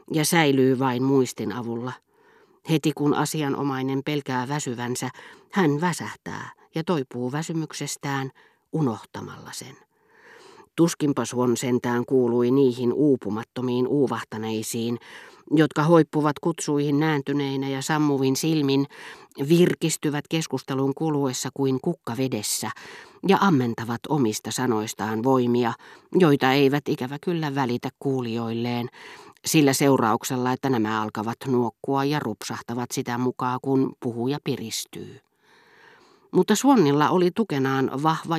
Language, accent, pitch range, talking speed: Finnish, native, 120-150 Hz, 100 wpm